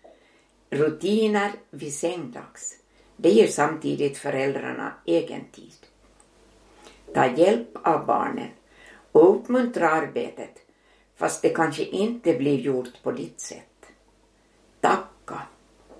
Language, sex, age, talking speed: Swedish, female, 60-79, 100 wpm